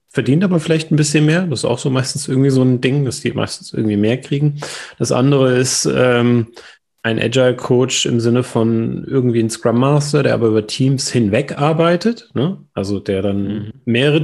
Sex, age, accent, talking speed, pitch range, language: male, 30-49, German, 180 wpm, 115-145 Hz, German